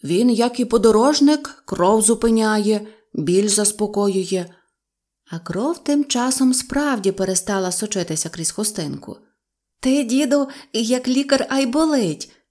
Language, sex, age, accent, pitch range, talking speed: Ukrainian, female, 30-49, native, 185-245 Hz, 110 wpm